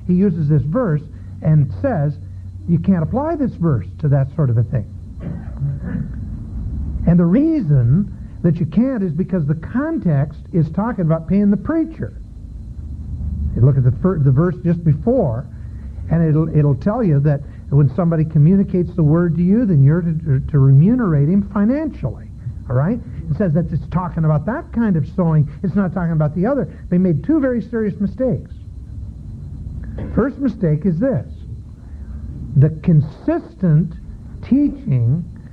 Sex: male